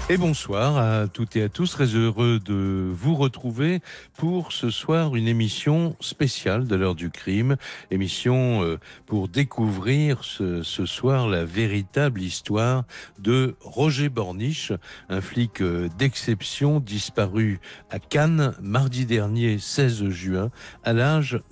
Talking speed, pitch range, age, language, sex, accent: 130 wpm, 105-140 Hz, 60-79, French, male, French